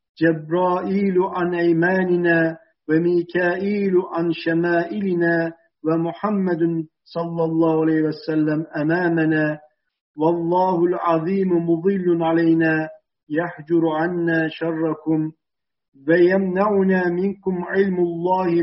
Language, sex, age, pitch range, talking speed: Turkish, male, 50-69, 165-185 Hz, 75 wpm